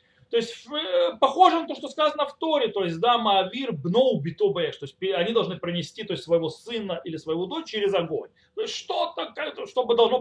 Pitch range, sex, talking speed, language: 175-270 Hz, male, 190 wpm, Russian